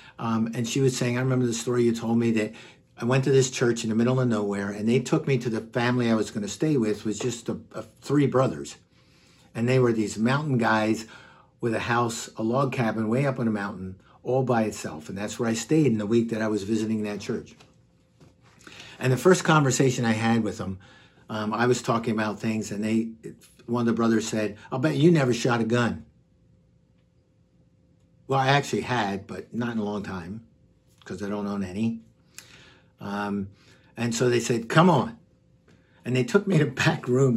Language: English